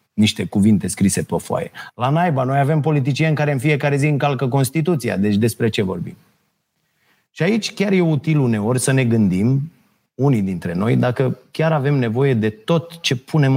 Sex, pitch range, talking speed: male, 105-150 Hz, 175 wpm